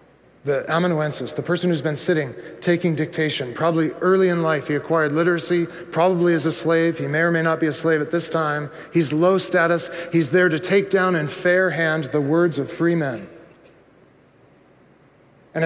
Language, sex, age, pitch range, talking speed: English, male, 40-59, 155-180 Hz, 185 wpm